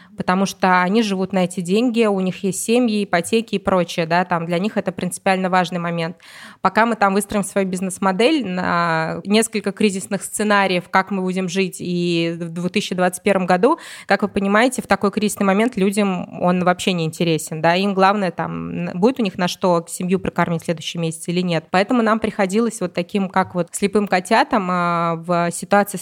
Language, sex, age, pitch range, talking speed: Russian, female, 20-39, 180-210 Hz, 185 wpm